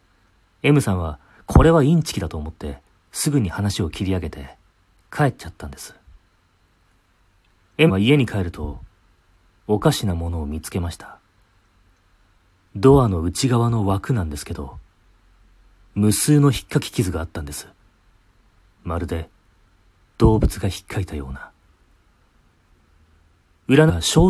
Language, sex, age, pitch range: Japanese, male, 40-59, 85-105 Hz